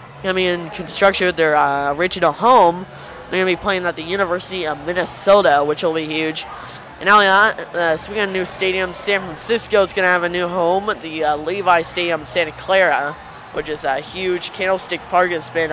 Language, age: English, 20-39